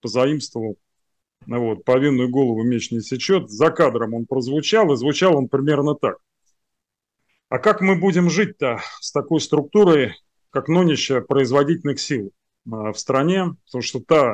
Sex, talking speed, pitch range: male, 140 wpm, 120-155 Hz